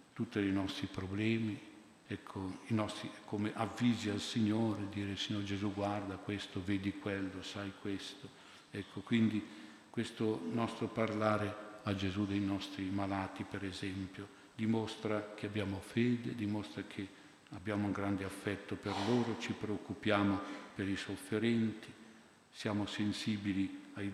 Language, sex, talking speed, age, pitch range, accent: Italian, male, 130 wpm, 50-69, 95-110 Hz, native